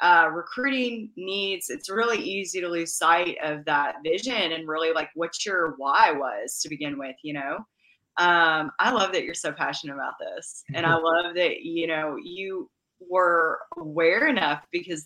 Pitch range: 160-195 Hz